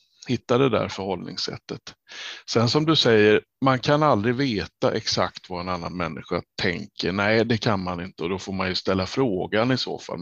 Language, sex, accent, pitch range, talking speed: Swedish, male, Norwegian, 100-130 Hz, 195 wpm